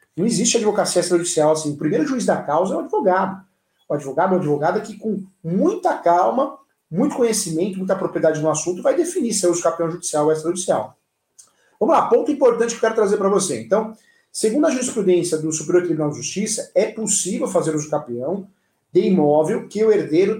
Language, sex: Portuguese, male